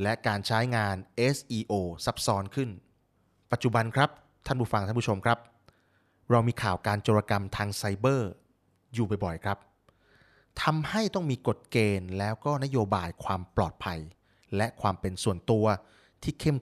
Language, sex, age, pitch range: Thai, male, 30-49, 100-125 Hz